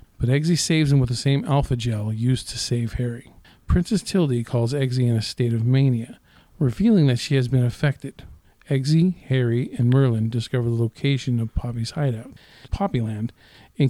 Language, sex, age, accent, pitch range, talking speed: English, male, 40-59, American, 115-140 Hz, 175 wpm